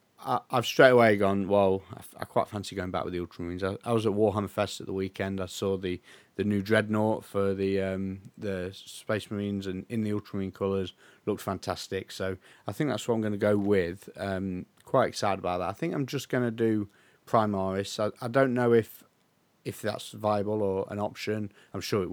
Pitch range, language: 95-110 Hz, English